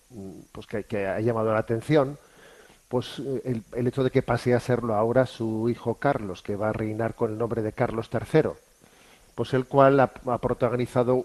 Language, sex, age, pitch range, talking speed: Spanish, male, 40-59, 110-125 Hz, 190 wpm